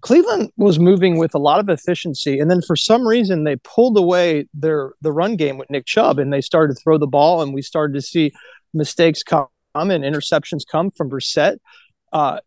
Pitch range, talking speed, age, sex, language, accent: 155-205 Hz, 205 wpm, 30-49, male, English, American